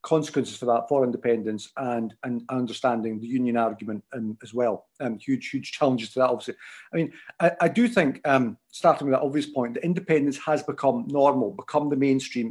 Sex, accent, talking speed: male, British, 190 wpm